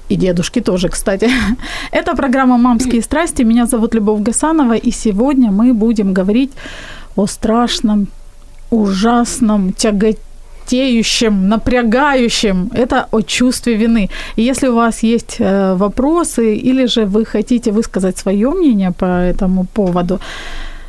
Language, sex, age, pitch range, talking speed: Ukrainian, female, 30-49, 205-250 Hz, 120 wpm